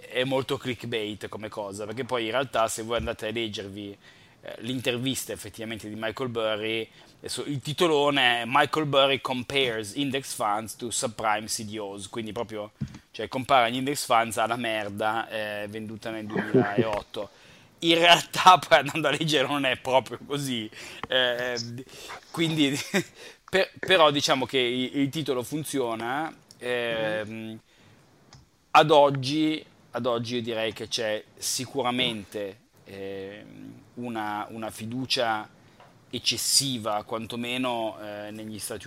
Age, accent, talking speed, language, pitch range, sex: 20-39, native, 125 wpm, Italian, 110-130 Hz, male